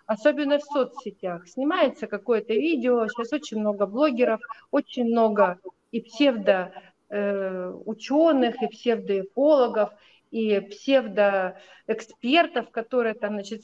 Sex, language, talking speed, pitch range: female, Russian, 90 wpm, 210-285 Hz